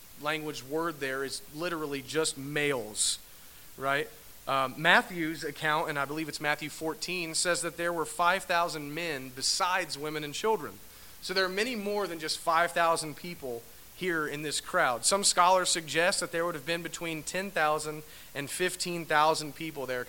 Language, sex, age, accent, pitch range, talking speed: English, male, 40-59, American, 135-180 Hz, 160 wpm